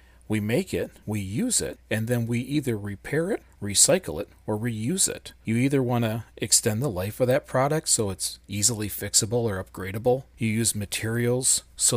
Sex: male